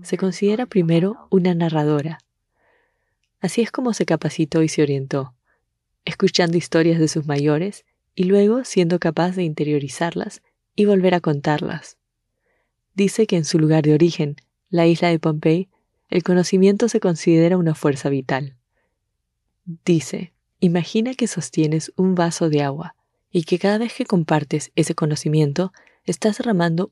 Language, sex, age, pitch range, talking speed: English, female, 20-39, 155-185 Hz, 145 wpm